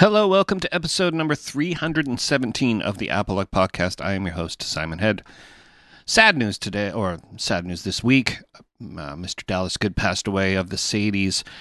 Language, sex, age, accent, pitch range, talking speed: English, male, 40-59, American, 95-125 Hz, 170 wpm